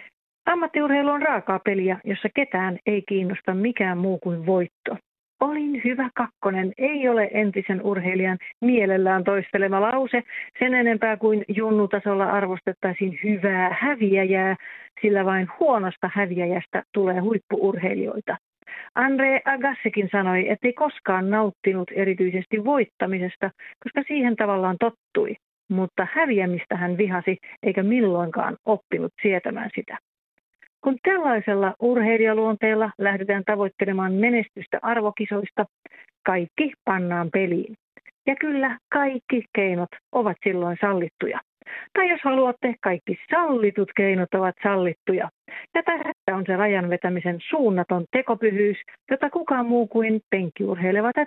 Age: 40-59